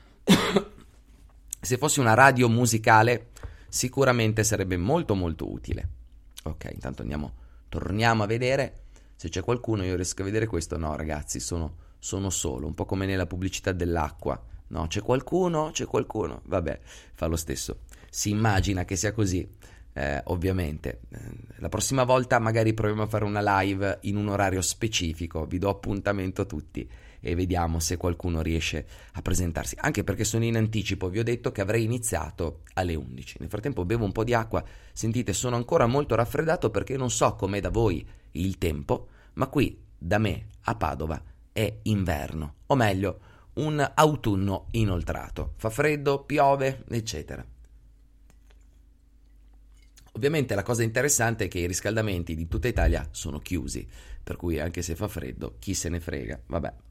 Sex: male